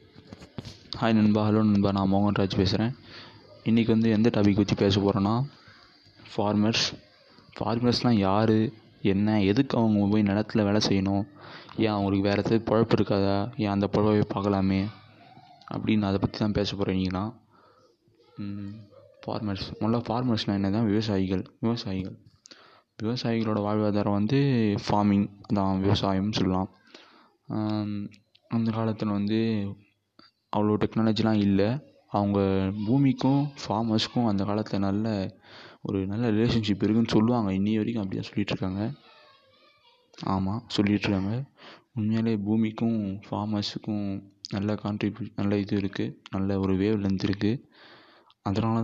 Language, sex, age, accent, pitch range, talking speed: Tamil, male, 20-39, native, 100-115 Hz, 110 wpm